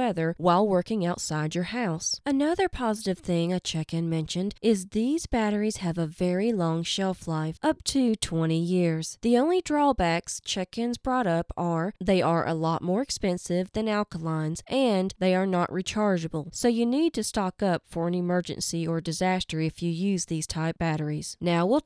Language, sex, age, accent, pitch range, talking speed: English, female, 20-39, American, 165-230 Hz, 175 wpm